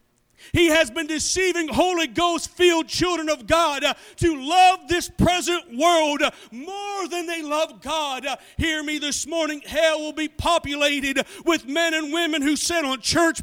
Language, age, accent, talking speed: English, 40-59, American, 155 wpm